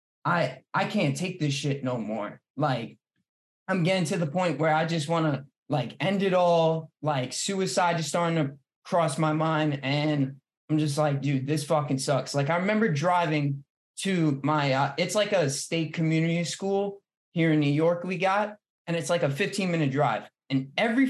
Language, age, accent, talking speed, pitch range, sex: English, 20-39, American, 190 wpm, 145-180 Hz, male